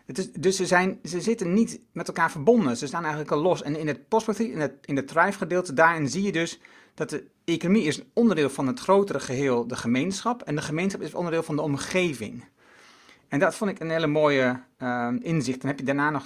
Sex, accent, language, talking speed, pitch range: male, Dutch, Dutch, 220 wpm, 135-185 Hz